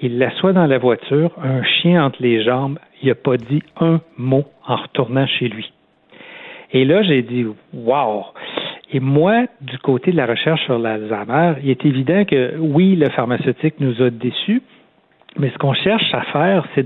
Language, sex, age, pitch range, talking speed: French, male, 60-79, 125-170 Hz, 180 wpm